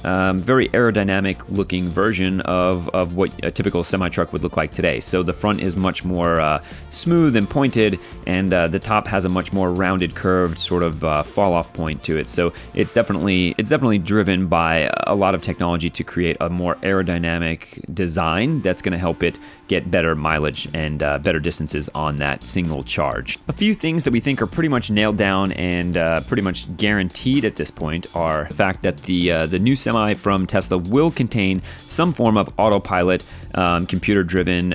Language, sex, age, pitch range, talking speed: English, male, 30-49, 85-105 Hz, 195 wpm